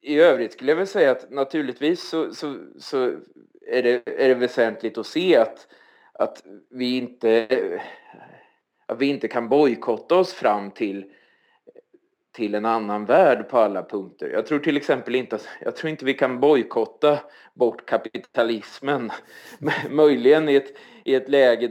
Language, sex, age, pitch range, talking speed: Swedish, male, 30-49, 110-160 Hz, 155 wpm